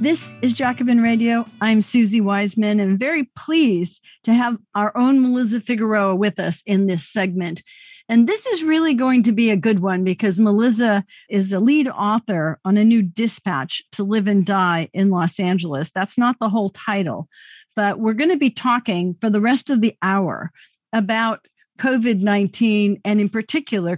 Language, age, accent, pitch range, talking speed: English, 50-69, American, 195-265 Hz, 175 wpm